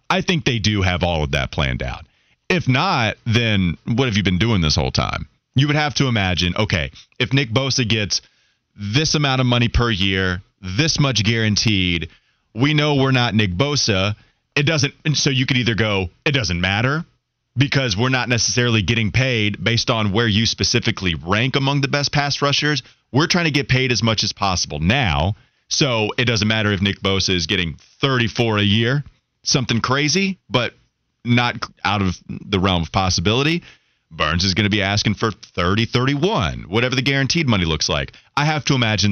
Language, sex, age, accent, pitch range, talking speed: English, male, 30-49, American, 100-135 Hz, 190 wpm